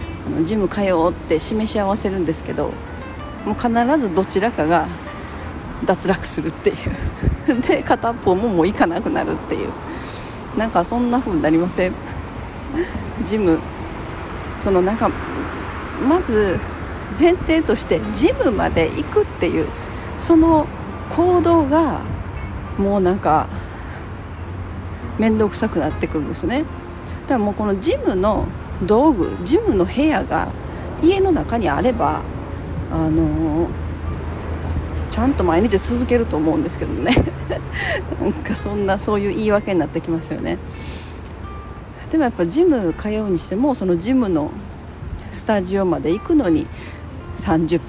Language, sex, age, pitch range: Japanese, female, 40-59, 150-245 Hz